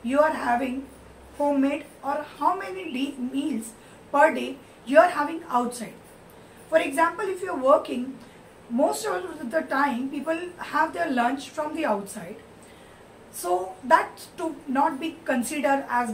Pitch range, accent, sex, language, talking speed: 230-290 Hz, native, female, Hindi, 140 wpm